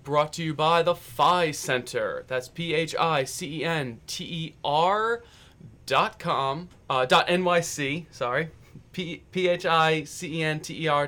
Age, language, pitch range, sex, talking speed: 30-49, English, 125-155 Hz, male, 80 wpm